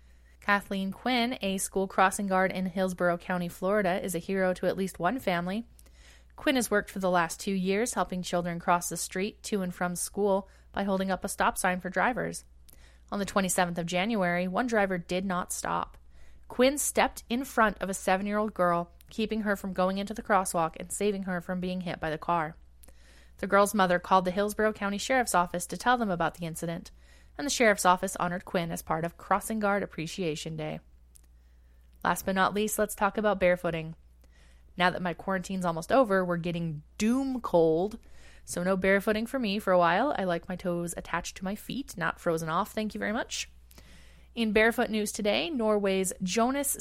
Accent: American